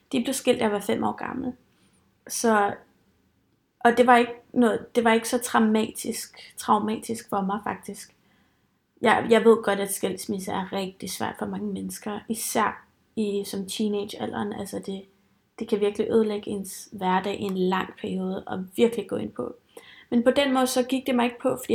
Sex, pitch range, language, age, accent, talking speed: female, 205-240 Hz, Danish, 30-49, native, 180 wpm